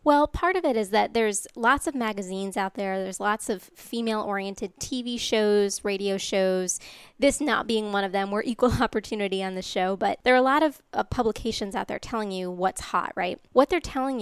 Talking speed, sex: 210 wpm, female